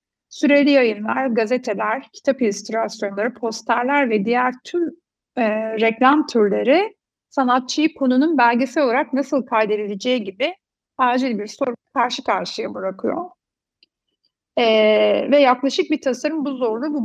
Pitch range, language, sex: 220-295 Hz, Turkish, female